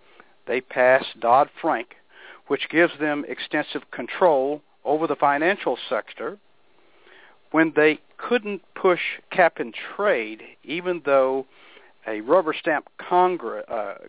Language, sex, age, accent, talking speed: English, male, 60-79, American, 105 wpm